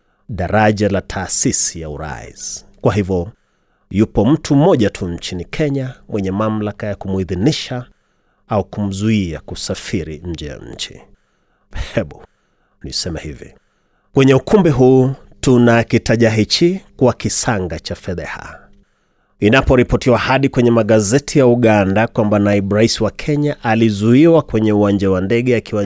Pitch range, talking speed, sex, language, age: 100-125 Hz, 115 wpm, male, Swahili, 30-49